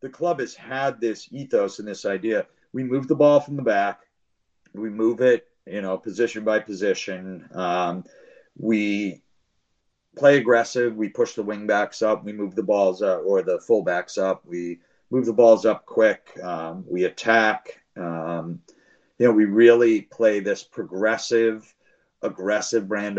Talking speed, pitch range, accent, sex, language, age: 165 wpm, 100-130 Hz, American, male, English, 40-59